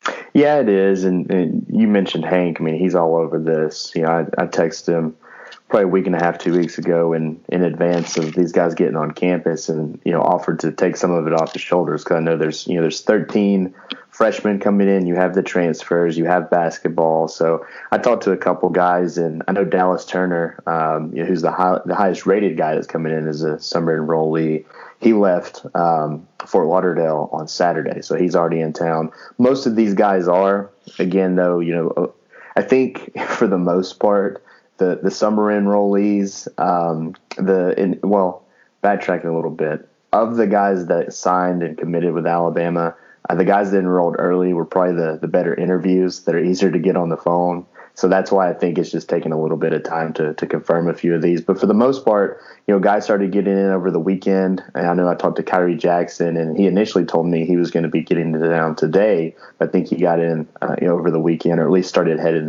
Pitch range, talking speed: 80-95 Hz, 225 wpm